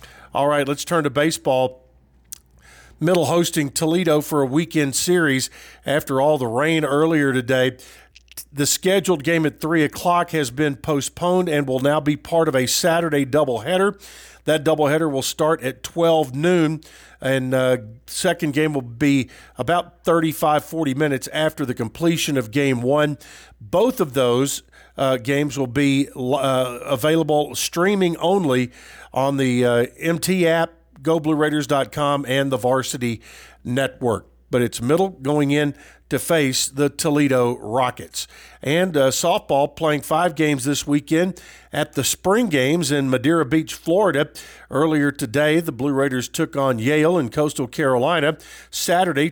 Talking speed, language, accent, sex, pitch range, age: 145 wpm, English, American, male, 130-160 Hz, 50-69